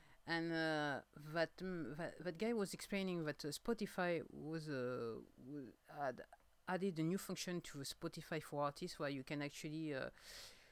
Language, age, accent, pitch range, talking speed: English, 50-69, French, 145-175 Hz, 170 wpm